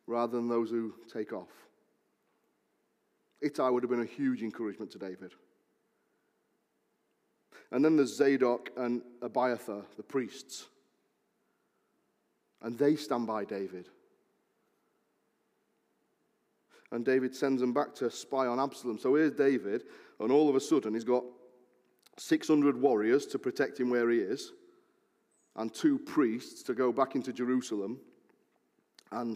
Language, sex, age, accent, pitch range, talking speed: English, male, 40-59, British, 115-145 Hz, 130 wpm